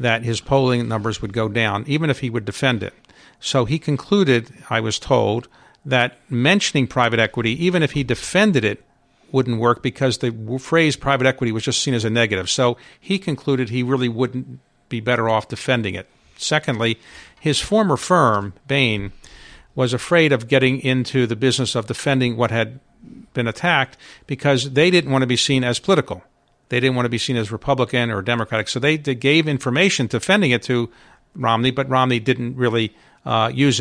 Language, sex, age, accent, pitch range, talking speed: English, male, 50-69, American, 115-140 Hz, 185 wpm